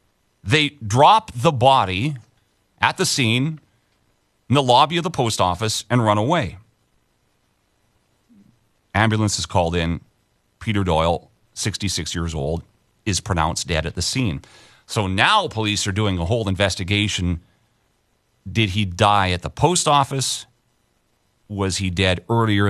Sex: male